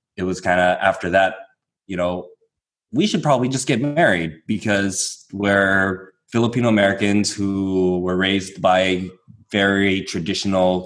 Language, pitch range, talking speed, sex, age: English, 90-105 Hz, 125 wpm, male, 20-39